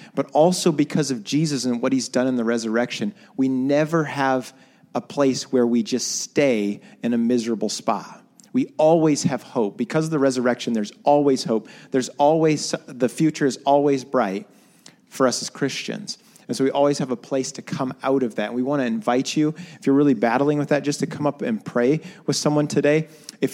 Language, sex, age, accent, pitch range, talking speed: English, male, 40-59, American, 135-160 Hz, 205 wpm